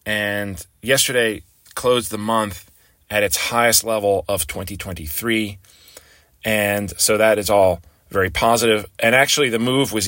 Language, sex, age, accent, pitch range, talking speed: English, male, 30-49, American, 90-115 Hz, 135 wpm